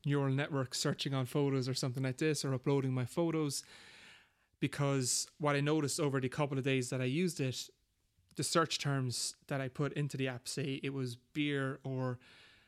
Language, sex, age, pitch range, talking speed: English, male, 30-49, 130-150 Hz, 190 wpm